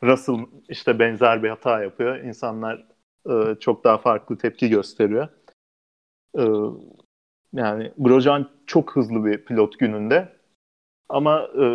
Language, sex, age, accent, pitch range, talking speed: Turkish, male, 40-59, native, 105-135 Hz, 115 wpm